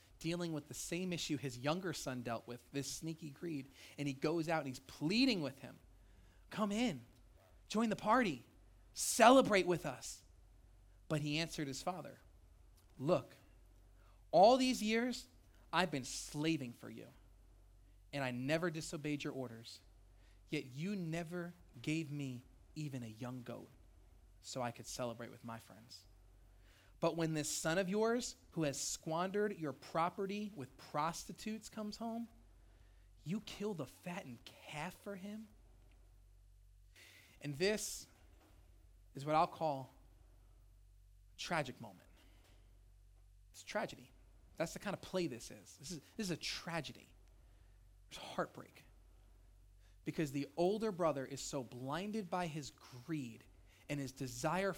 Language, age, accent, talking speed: English, 30-49, American, 140 wpm